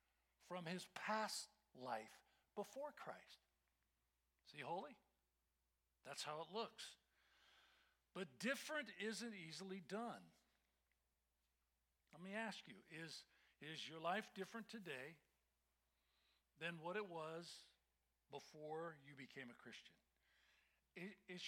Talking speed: 105 wpm